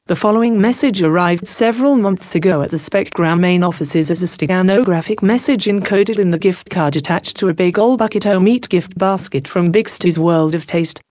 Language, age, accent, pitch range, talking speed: English, 40-59, British, 165-205 Hz, 195 wpm